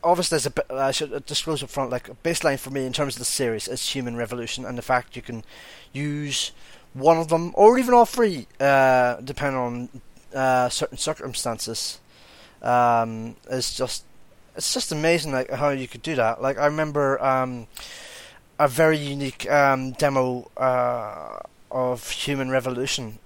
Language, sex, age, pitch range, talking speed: English, male, 20-39, 125-150 Hz, 170 wpm